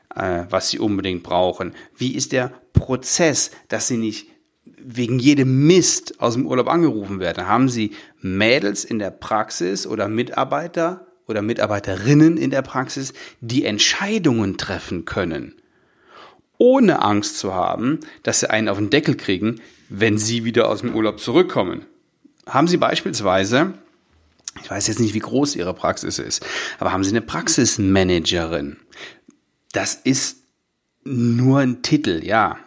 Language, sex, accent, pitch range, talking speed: German, male, German, 105-130 Hz, 140 wpm